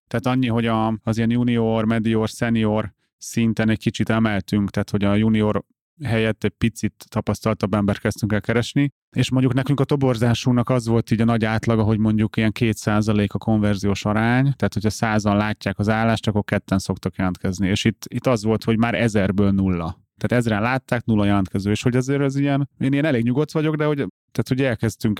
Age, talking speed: 30-49, 195 wpm